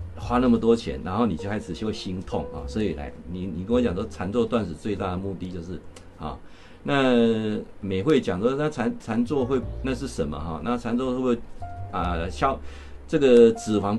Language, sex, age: Chinese, male, 50-69